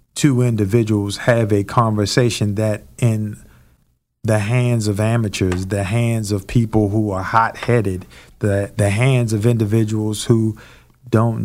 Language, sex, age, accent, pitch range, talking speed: English, male, 50-69, American, 100-115 Hz, 130 wpm